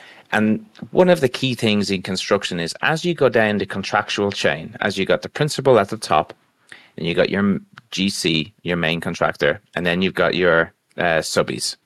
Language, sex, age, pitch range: English, male, 30-49, 95-125 Hz